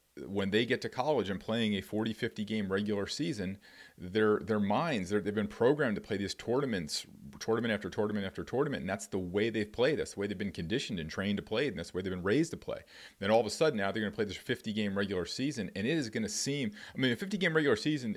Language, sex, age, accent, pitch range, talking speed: English, male, 40-59, American, 100-120 Hz, 260 wpm